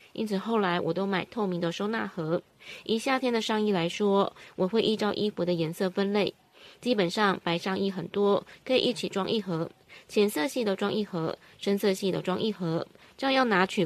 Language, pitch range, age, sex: Chinese, 180-220 Hz, 20-39, female